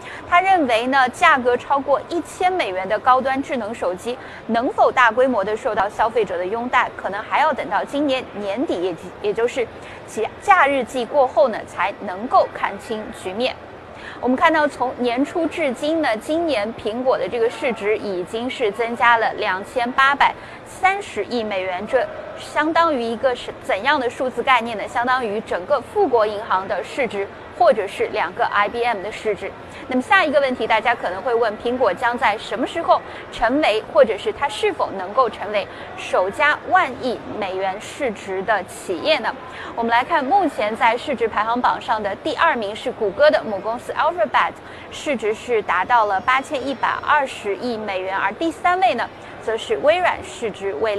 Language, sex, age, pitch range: Chinese, female, 20-39, 225-310 Hz